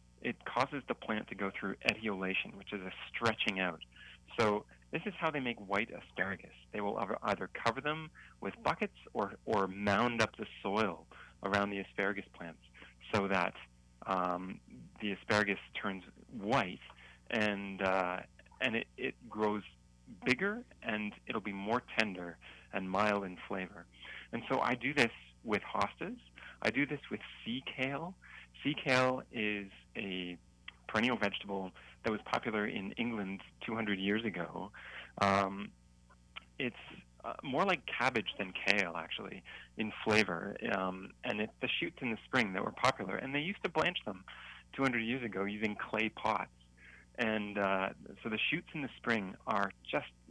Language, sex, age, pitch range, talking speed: English, male, 30-49, 85-110 Hz, 155 wpm